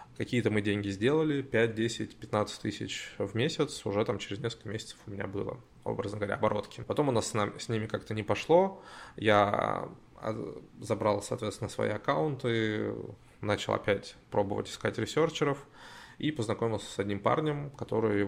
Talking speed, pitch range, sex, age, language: 155 wpm, 100-130 Hz, male, 20-39, Russian